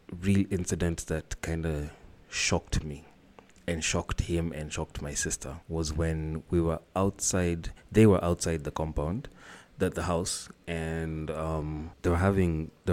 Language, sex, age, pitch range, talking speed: English, male, 30-49, 80-100 Hz, 155 wpm